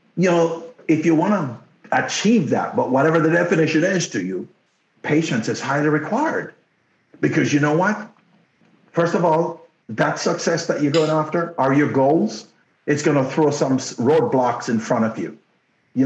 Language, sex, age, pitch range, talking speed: English, male, 50-69, 145-210 Hz, 170 wpm